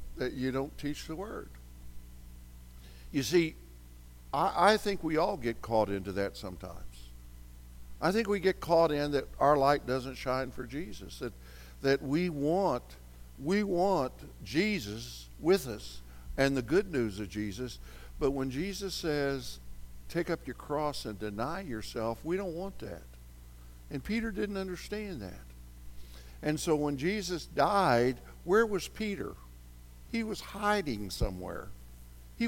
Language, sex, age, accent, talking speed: English, male, 60-79, American, 145 wpm